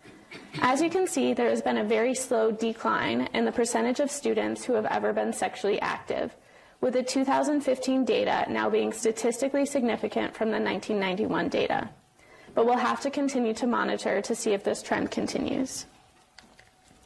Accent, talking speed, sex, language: American, 165 wpm, female, English